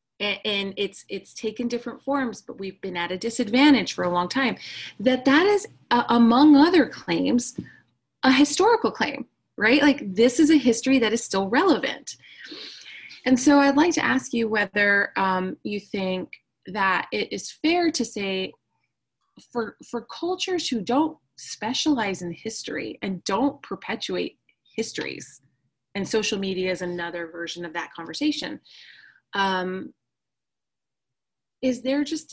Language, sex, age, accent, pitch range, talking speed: English, female, 20-39, American, 180-245 Hz, 145 wpm